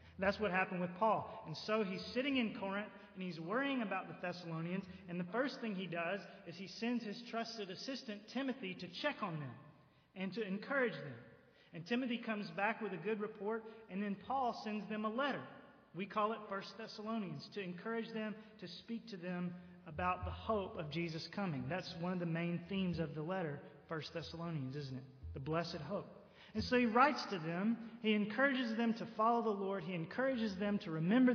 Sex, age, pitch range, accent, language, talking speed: male, 30-49, 175-225 Hz, American, English, 200 wpm